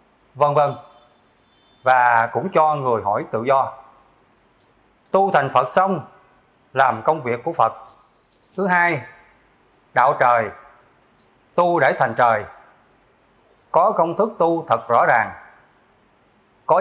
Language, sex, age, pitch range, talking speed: Vietnamese, male, 20-39, 120-175 Hz, 115 wpm